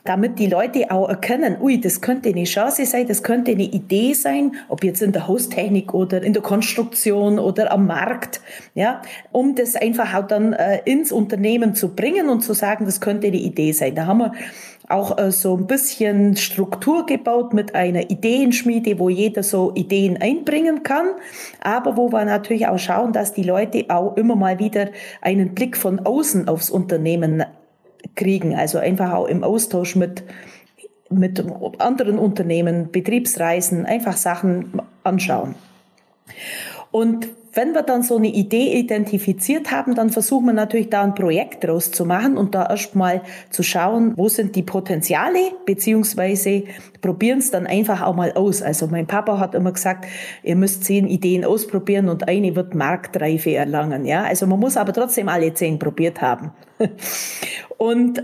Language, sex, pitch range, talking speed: German, female, 185-230 Hz, 165 wpm